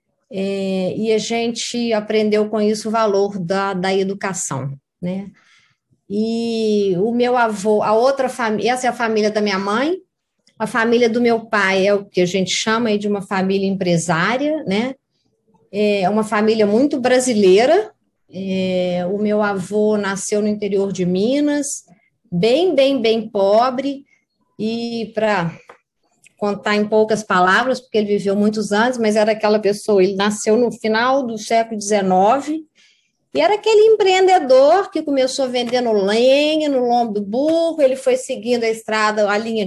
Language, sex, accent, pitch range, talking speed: Portuguese, female, Brazilian, 205-255 Hz, 155 wpm